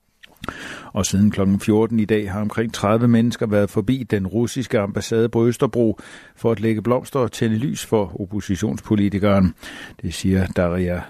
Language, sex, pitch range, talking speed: Danish, male, 95-115 Hz, 155 wpm